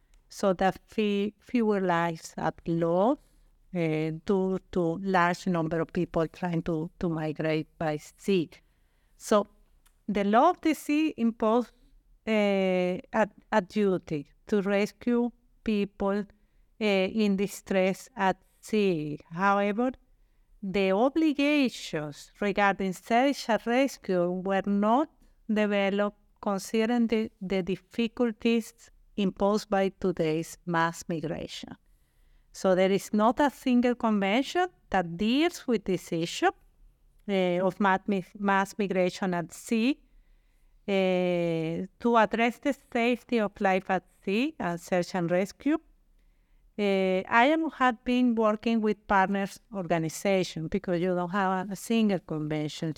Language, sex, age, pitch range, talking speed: English, female, 50-69, 180-230 Hz, 120 wpm